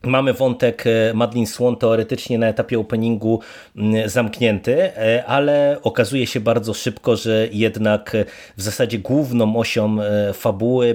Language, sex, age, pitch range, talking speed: Polish, male, 30-49, 110-125 Hz, 115 wpm